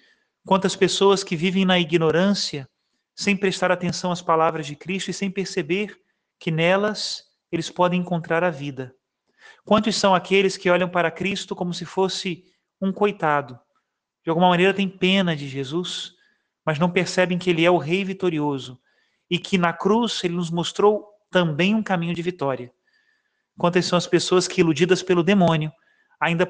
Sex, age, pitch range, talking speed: male, 30-49, 160-190 Hz, 165 wpm